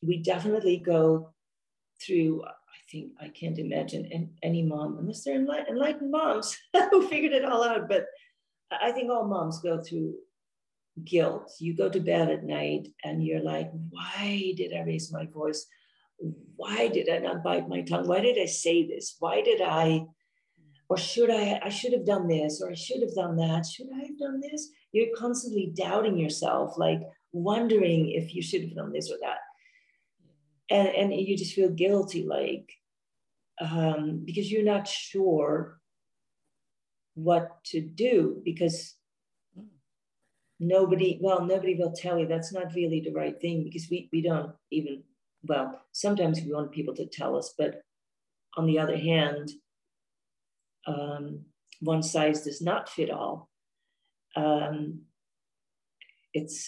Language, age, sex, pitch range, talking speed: English, 40-59, female, 150-205 Hz, 155 wpm